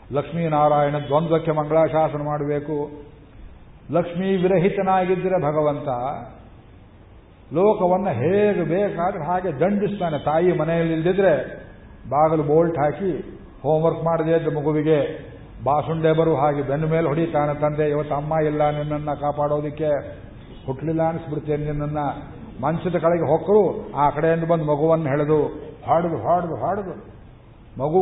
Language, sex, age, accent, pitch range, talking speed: Kannada, male, 50-69, native, 150-180 Hz, 105 wpm